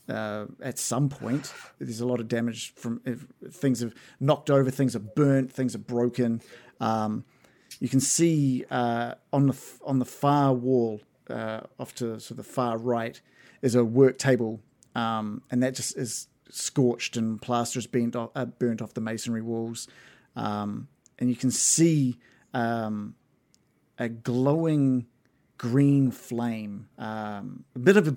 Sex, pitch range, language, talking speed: male, 115-135 Hz, English, 160 wpm